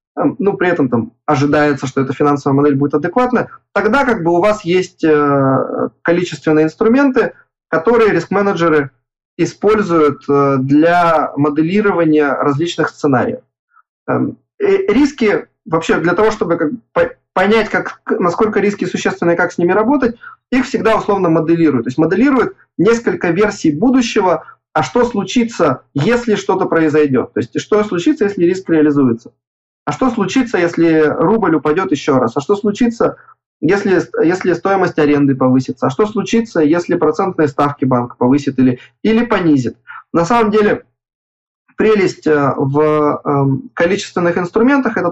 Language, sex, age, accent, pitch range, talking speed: Russian, male, 20-39, native, 145-215 Hz, 135 wpm